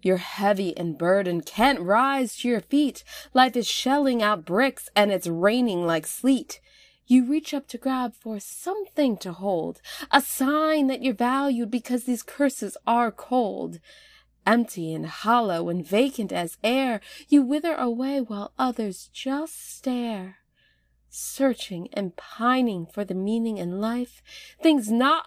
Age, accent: 20-39, American